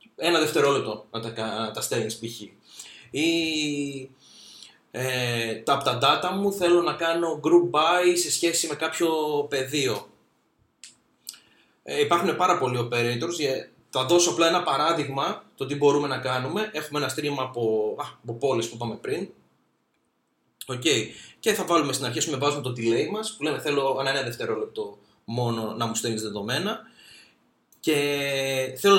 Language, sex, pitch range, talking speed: Greek, male, 130-180 Hz, 150 wpm